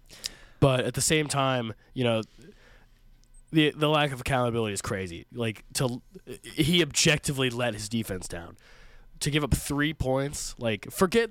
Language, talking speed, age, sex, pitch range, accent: English, 155 wpm, 20-39, male, 105-130 Hz, American